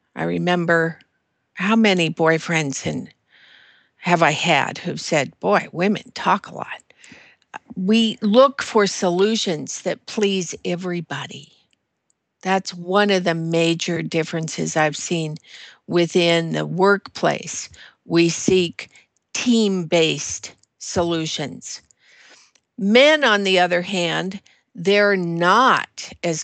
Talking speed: 100 wpm